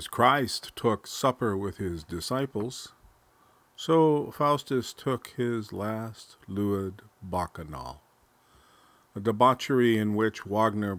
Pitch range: 100-135 Hz